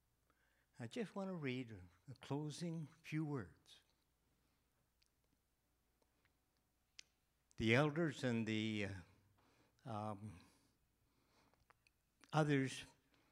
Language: English